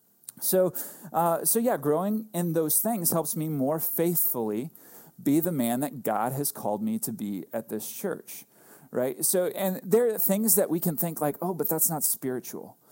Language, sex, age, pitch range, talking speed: English, male, 30-49, 125-170 Hz, 190 wpm